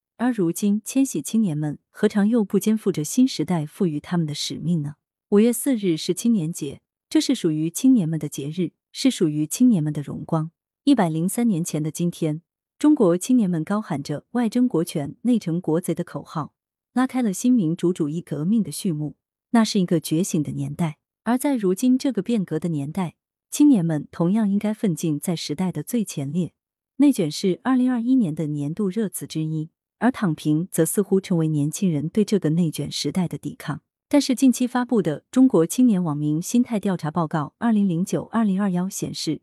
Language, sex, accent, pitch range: Chinese, female, native, 155-225 Hz